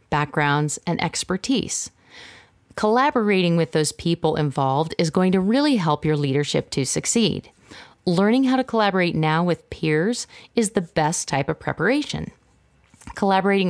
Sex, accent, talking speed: female, American, 135 wpm